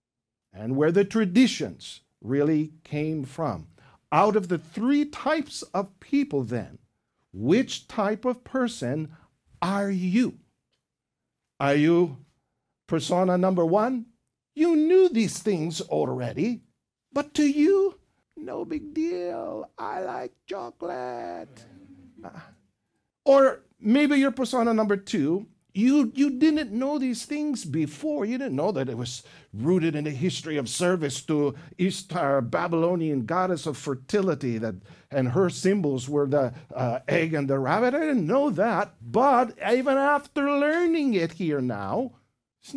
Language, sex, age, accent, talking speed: Filipino, male, 50-69, American, 130 wpm